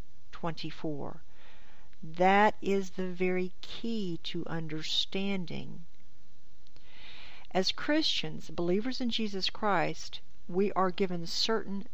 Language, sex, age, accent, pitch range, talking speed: English, female, 60-79, American, 160-200 Hz, 90 wpm